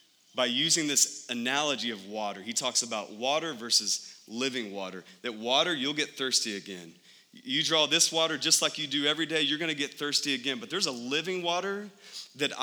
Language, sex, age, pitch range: English, male, 30-49, 130-160 Hz